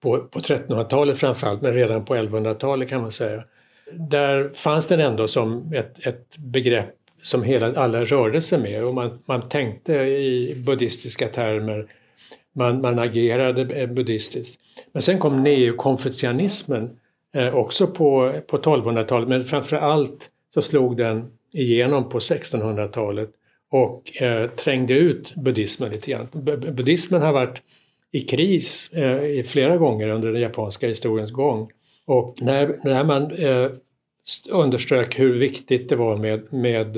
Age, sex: 60-79, male